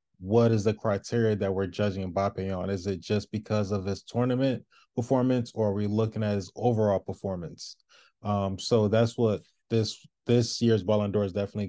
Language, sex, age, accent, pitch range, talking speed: English, male, 20-39, American, 100-115 Hz, 185 wpm